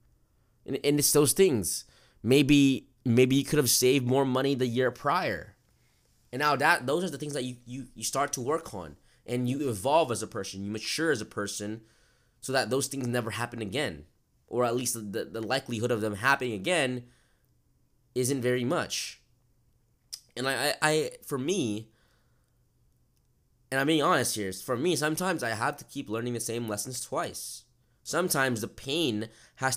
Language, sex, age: English, male, 20-39